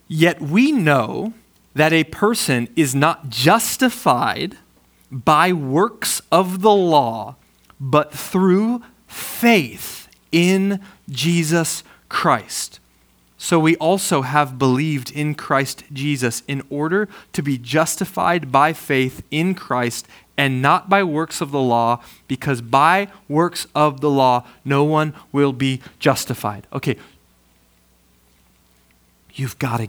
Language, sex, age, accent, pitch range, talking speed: English, male, 20-39, American, 125-170 Hz, 120 wpm